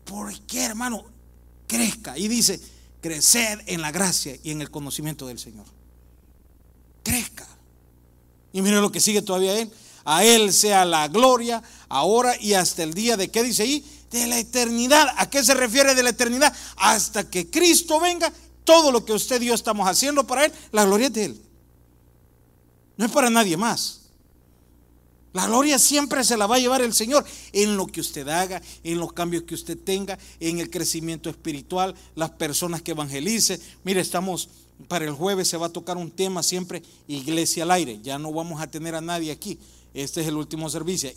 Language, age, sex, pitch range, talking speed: Spanish, 40-59, male, 145-215 Hz, 185 wpm